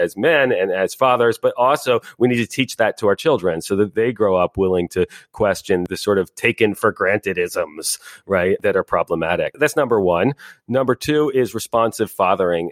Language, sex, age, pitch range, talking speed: English, male, 40-59, 100-135 Hz, 185 wpm